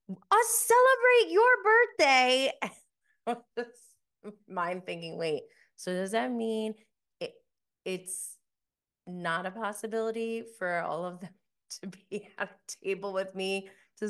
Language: English